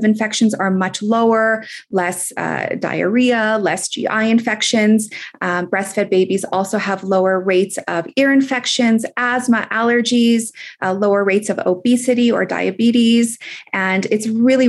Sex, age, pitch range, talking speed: female, 30-49, 195-235 Hz, 130 wpm